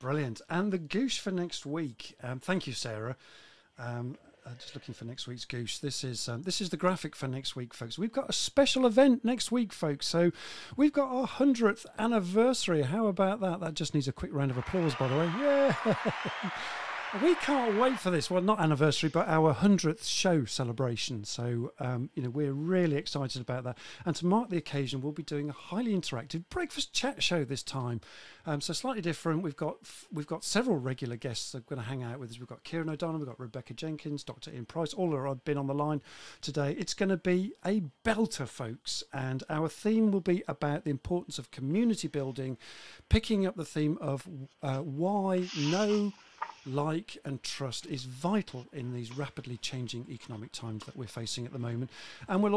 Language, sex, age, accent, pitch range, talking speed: English, male, 40-59, British, 135-185 Hz, 210 wpm